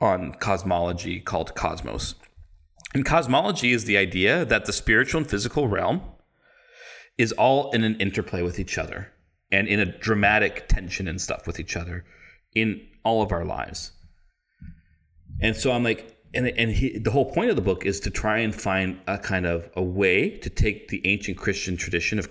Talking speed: 185 wpm